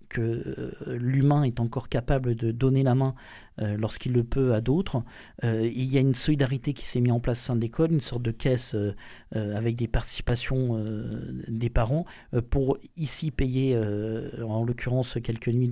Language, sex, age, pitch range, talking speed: French, male, 40-59, 125-155 Hz, 175 wpm